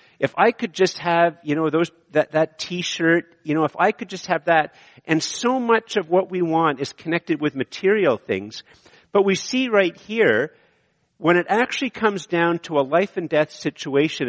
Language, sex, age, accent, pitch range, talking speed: English, male, 50-69, American, 130-180 Hz, 195 wpm